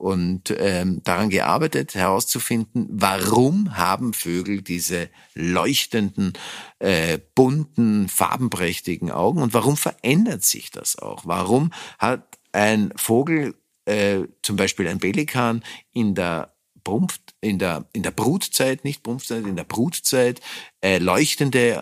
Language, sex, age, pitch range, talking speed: German, male, 50-69, 105-145 Hz, 120 wpm